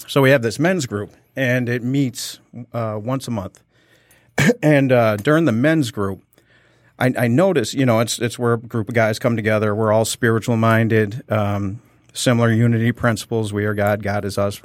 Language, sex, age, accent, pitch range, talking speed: English, male, 40-59, American, 110-130 Hz, 195 wpm